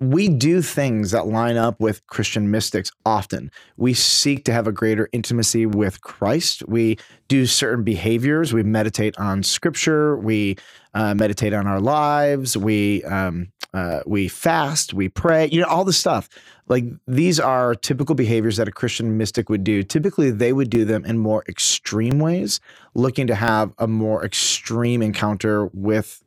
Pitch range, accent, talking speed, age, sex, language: 105-135 Hz, American, 165 wpm, 30-49, male, English